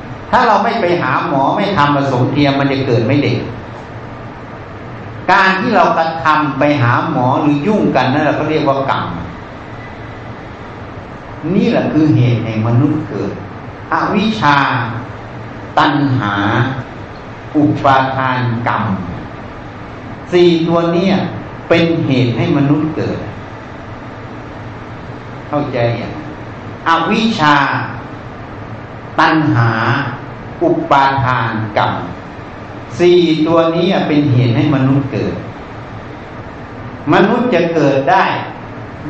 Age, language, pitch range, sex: 60-79, Thai, 120-165 Hz, male